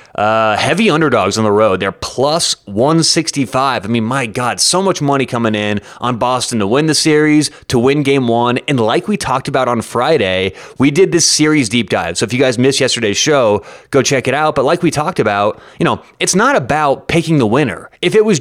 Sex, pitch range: male, 115-150 Hz